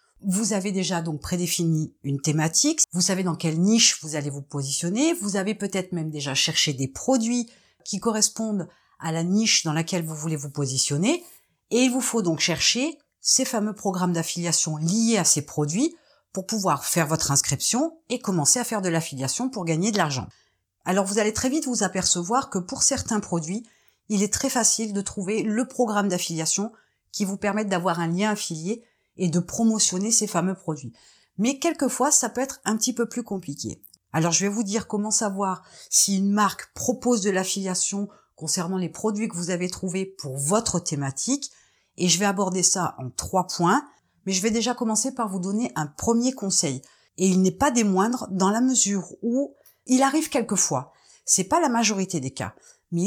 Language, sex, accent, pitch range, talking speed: French, female, French, 170-230 Hz, 190 wpm